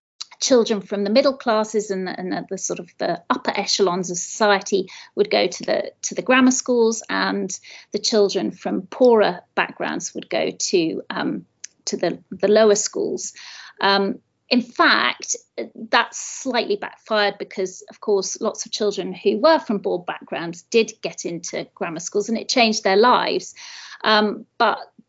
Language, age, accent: English, 30-49, British